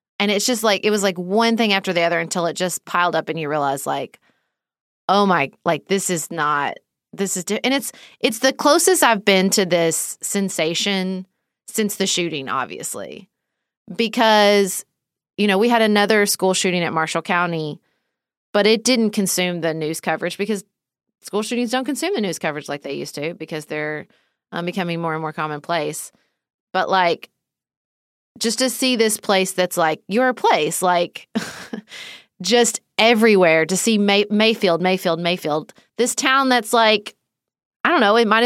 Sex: female